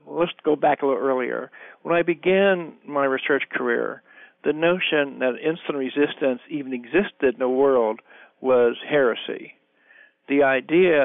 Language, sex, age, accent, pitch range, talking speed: English, male, 60-79, American, 125-155 Hz, 140 wpm